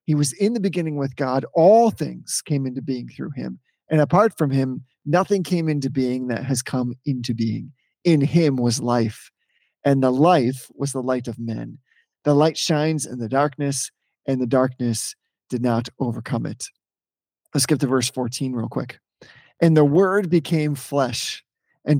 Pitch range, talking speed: 130-165 Hz, 175 wpm